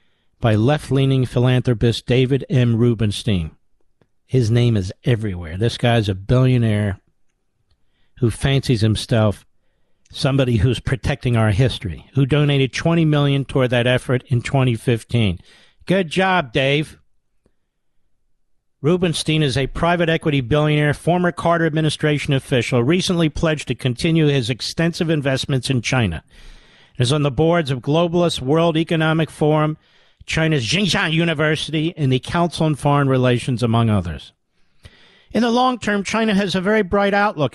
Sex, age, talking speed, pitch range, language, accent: male, 50-69, 135 wpm, 125-170 Hz, English, American